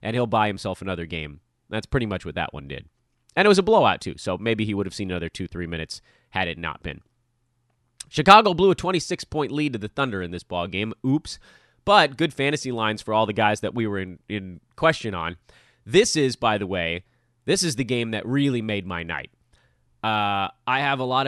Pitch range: 105-140 Hz